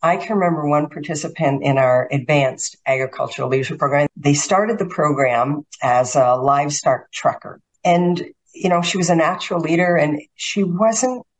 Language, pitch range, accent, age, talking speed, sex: English, 145-180 Hz, American, 50-69, 160 wpm, female